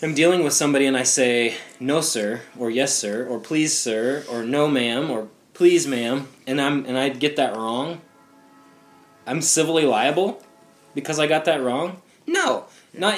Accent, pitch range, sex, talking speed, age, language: American, 120-155 Hz, male, 175 wpm, 20-39, English